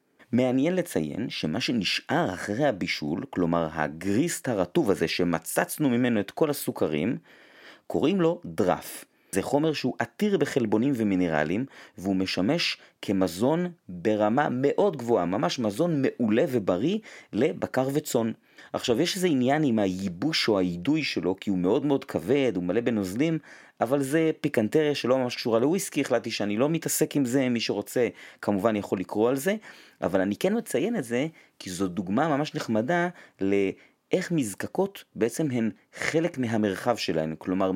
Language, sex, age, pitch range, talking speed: Hebrew, male, 30-49, 95-150 Hz, 145 wpm